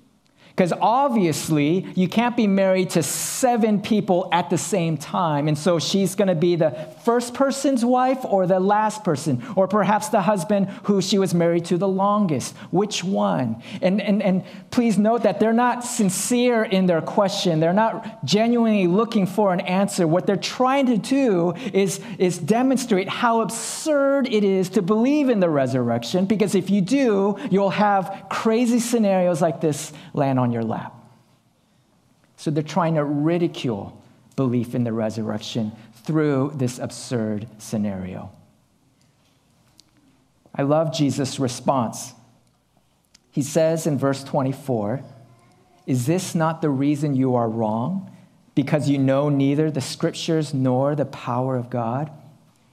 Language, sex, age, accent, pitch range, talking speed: English, male, 40-59, American, 145-205 Hz, 150 wpm